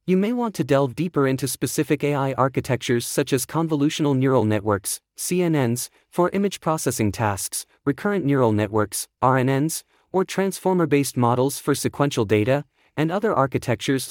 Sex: male